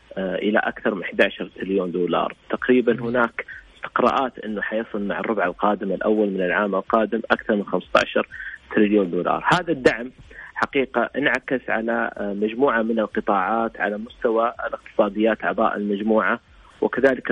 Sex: male